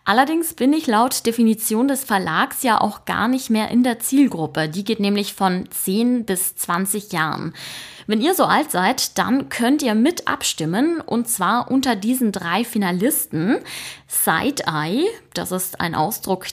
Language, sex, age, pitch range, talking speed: German, female, 20-39, 175-245 Hz, 165 wpm